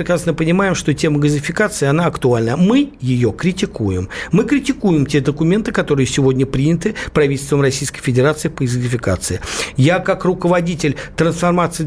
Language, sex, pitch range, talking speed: Russian, male, 140-190 Hz, 130 wpm